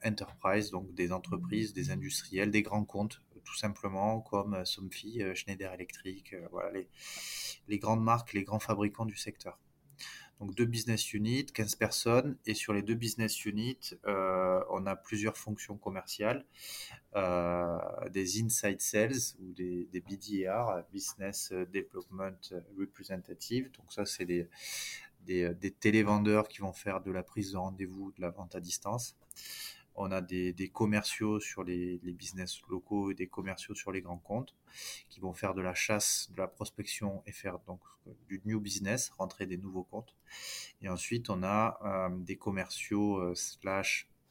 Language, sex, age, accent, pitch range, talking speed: French, male, 20-39, French, 95-110 Hz, 160 wpm